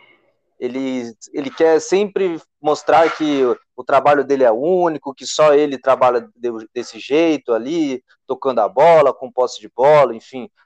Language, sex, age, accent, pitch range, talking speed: Portuguese, male, 20-39, Brazilian, 145-220 Hz, 150 wpm